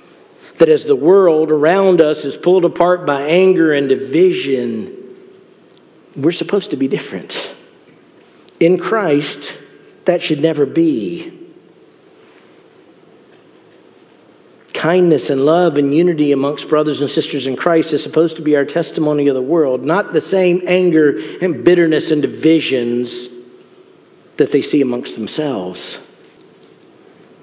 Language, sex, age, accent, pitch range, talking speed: English, male, 50-69, American, 140-175 Hz, 125 wpm